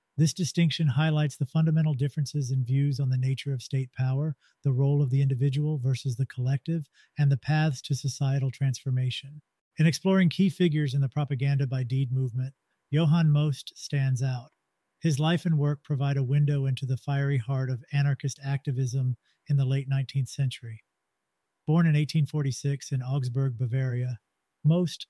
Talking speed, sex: 165 wpm, male